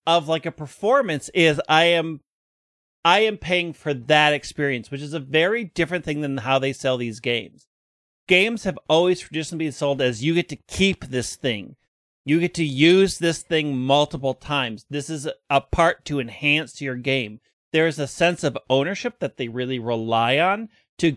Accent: American